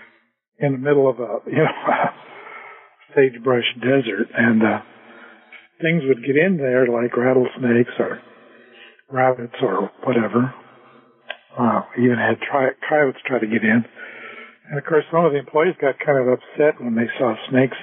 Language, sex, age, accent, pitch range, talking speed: English, male, 60-79, American, 125-170 Hz, 160 wpm